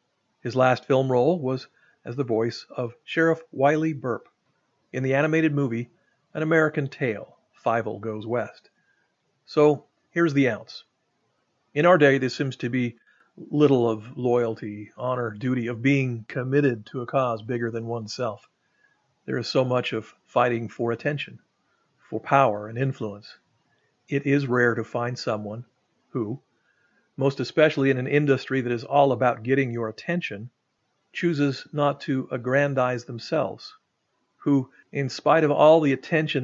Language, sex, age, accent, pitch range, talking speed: English, male, 50-69, American, 115-145 Hz, 150 wpm